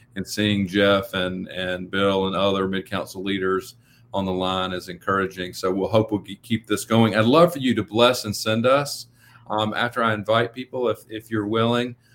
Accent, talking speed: American, 205 wpm